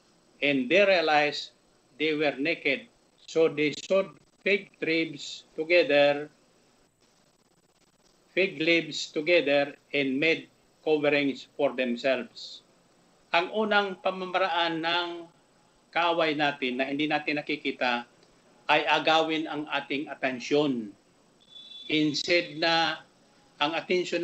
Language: Filipino